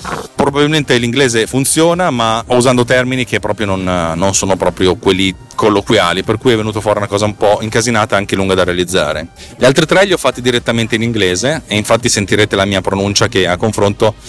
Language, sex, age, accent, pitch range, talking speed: Italian, male, 30-49, native, 100-130 Hz, 200 wpm